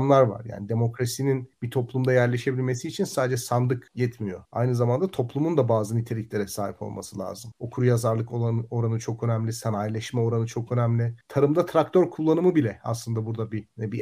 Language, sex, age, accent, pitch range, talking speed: Turkish, male, 40-59, native, 120-155 Hz, 150 wpm